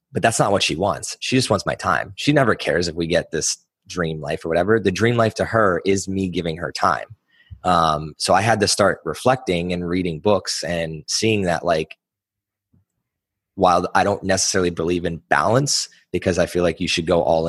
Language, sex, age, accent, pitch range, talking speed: English, male, 20-39, American, 85-100 Hz, 210 wpm